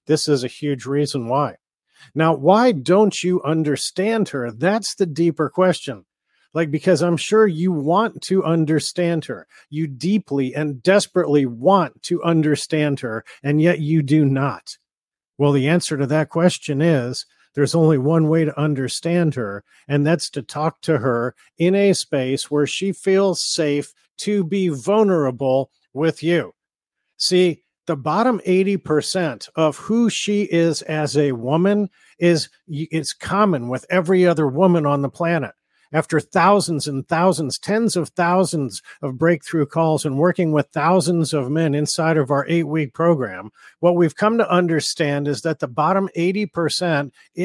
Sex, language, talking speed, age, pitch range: male, English, 155 wpm, 40-59, 145-180 Hz